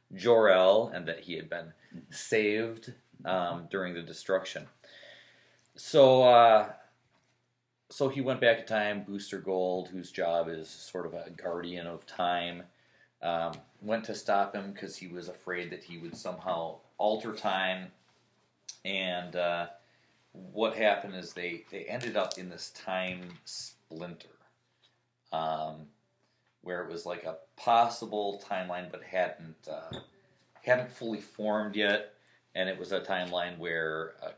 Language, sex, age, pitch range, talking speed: English, male, 30-49, 90-115 Hz, 140 wpm